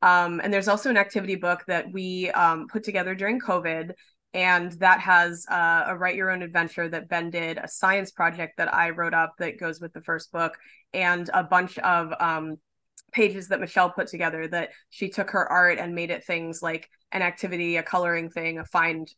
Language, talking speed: English, 205 wpm